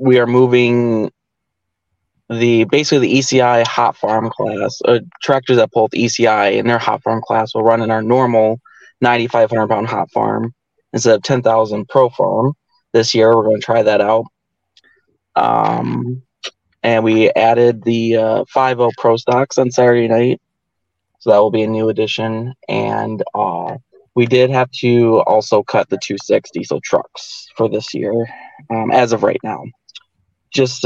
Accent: American